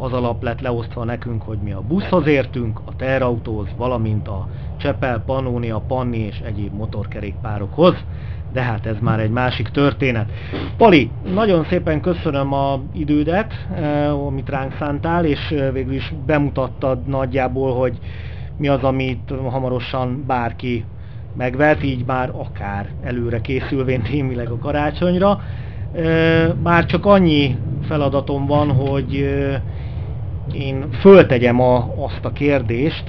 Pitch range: 115-140 Hz